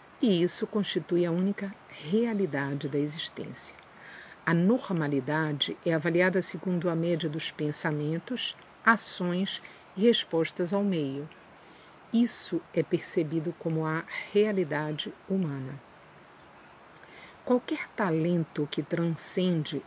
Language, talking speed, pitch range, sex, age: Portuguese, 100 wpm, 155-195 Hz, female, 50-69